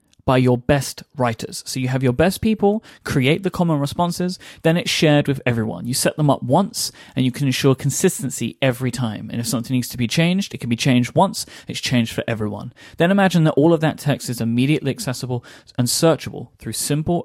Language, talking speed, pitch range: English, 210 wpm, 115-150 Hz